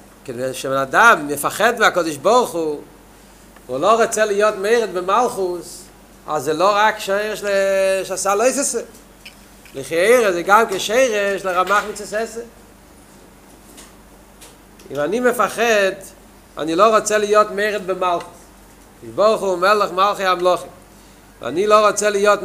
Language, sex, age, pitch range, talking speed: Hebrew, male, 40-59, 160-210 Hz, 120 wpm